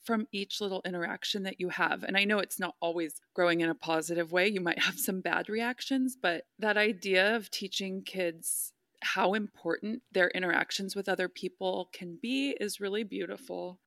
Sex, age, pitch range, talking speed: female, 20-39, 180-245 Hz, 180 wpm